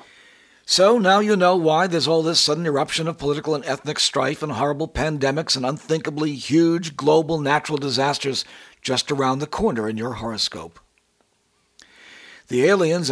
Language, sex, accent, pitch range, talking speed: English, male, American, 135-170 Hz, 150 wpm